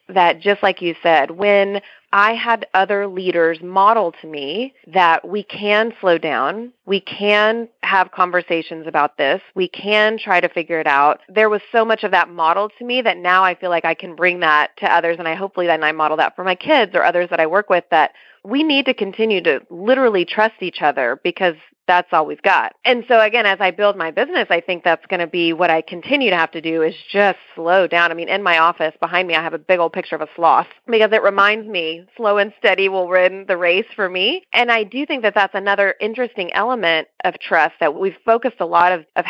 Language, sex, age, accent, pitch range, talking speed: English, female, 30-49, American, 165-210 Hz, 235 wpm